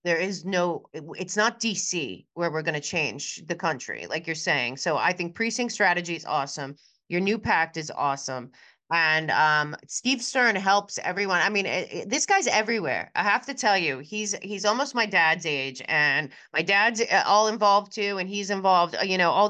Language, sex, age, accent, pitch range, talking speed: English, female, 30-49, American, 170-230 Hz, 195 wpm